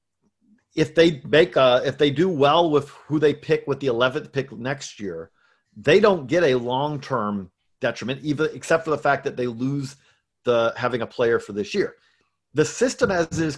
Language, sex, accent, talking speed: English, male, American, 200 wpm